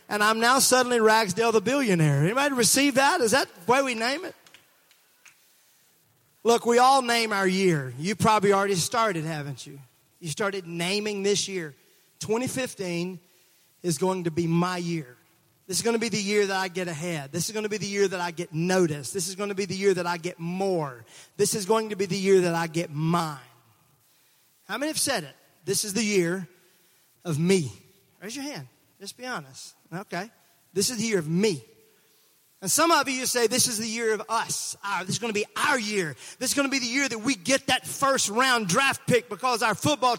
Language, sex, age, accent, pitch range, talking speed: English, male, 30-49, American, 175-240 Hz, 215 wpm